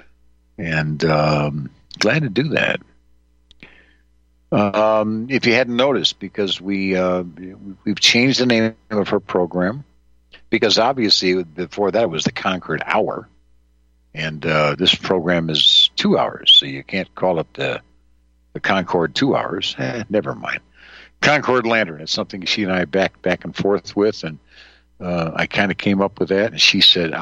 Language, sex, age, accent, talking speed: English, male, 60-79, American, 165 wpm